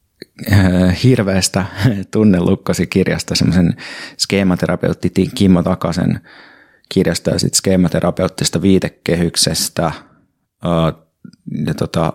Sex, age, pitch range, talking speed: male, 30-49, 90-100 Hz, 60 wpm